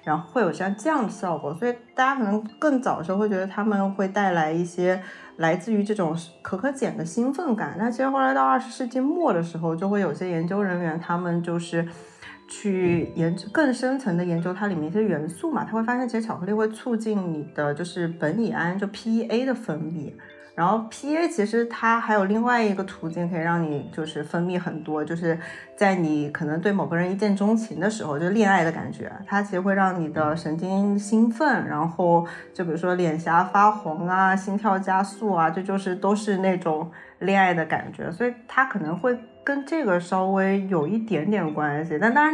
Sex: female